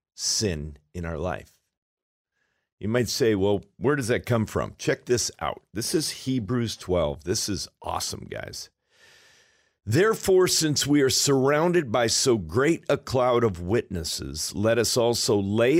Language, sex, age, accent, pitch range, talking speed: English, male, 50-69, American, 90-135 Hz, 150 wpm